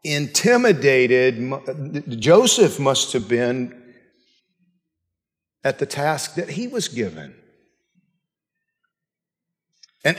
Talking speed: 75 wpm